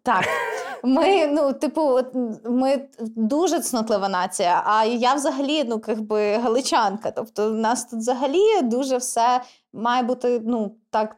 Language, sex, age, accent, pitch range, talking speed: Ukrainian, female, 20-39, native, 225-280 Hz, 140 wpm